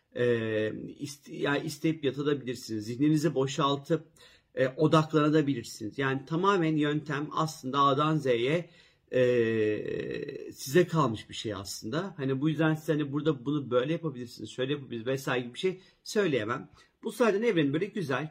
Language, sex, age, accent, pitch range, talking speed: Turkish, male, 40-59, native, 120-165 Hz, 140 wpm